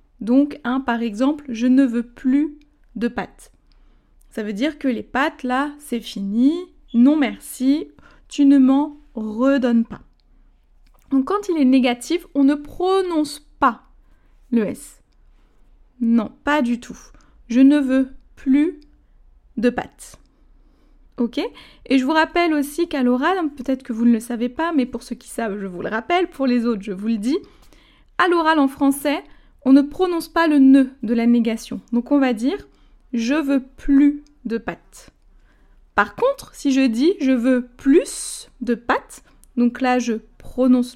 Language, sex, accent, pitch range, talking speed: French, female, French, 240-290 Hz, 165 wpm